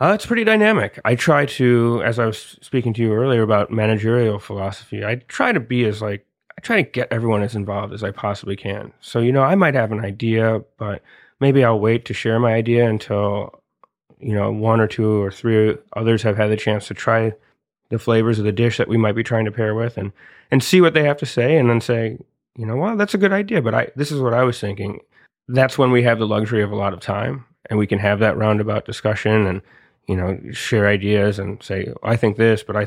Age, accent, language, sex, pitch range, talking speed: 30-49, American, English, male, 105-120 Hz, 245 wpm